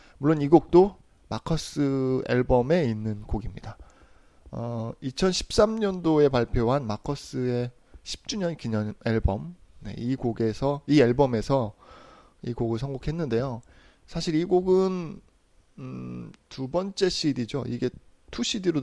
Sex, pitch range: male, 115-150 Hz